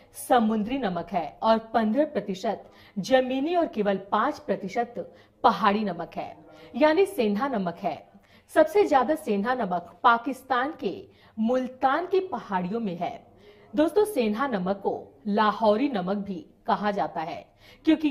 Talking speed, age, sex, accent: 135 wpm, 40-59, female, native